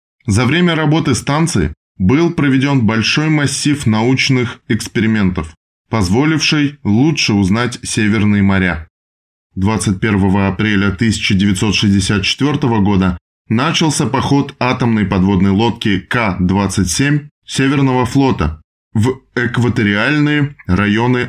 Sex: male